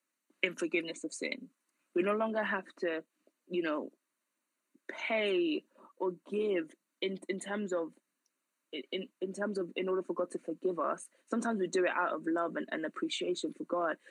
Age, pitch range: 20-39, 185-295 Hz